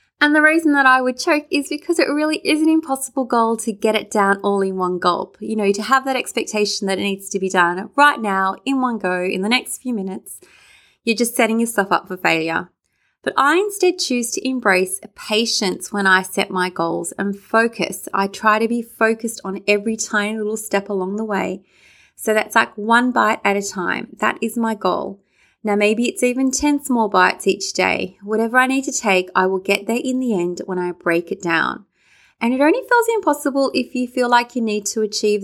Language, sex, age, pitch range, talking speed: English, female, 20-39, 195-250 Hz, 220 wpm